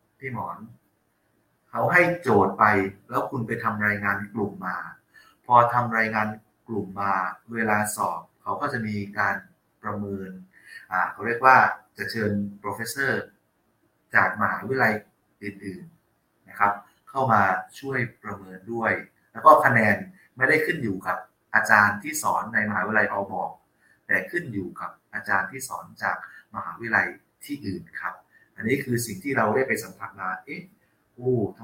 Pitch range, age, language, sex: 100-115 Hz, 30-49, Thai, male